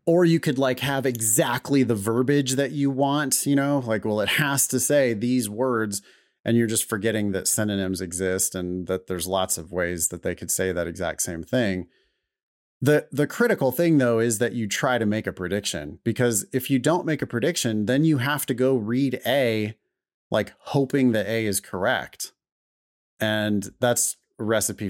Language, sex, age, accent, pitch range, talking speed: English, male, 30-49, American, 100-130 Hz, 190 wpm